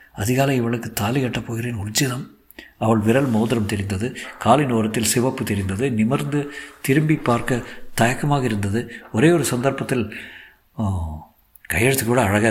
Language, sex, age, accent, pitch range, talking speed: Tamil, male, 50-69, native, 105-125 Hz, 115 wpm